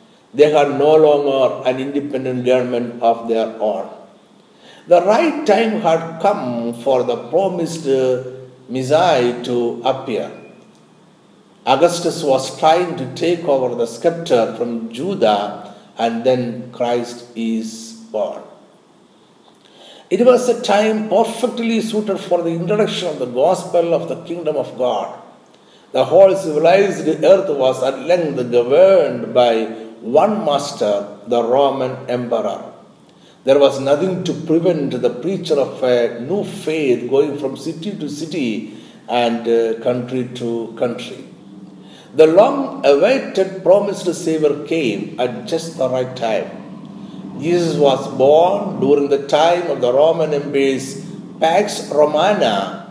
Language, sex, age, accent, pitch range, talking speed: Malayalam, male, 60-79, native, 125-175 Hz, 125 wpm